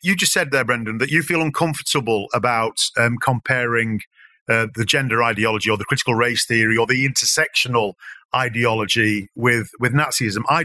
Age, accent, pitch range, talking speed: 40-59, British, 120-170 Hz, 165 wpm